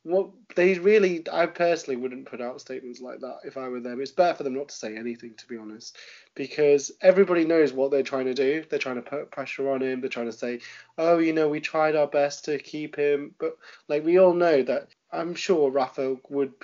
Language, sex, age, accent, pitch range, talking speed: English, male, 20-39, British, 135-165 Hz, 235 wpm